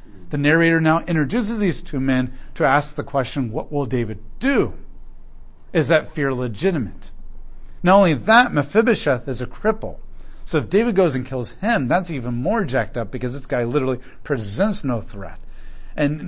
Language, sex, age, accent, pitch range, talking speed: English, male, 40-59, American, 130-180 Hz, 170 wpm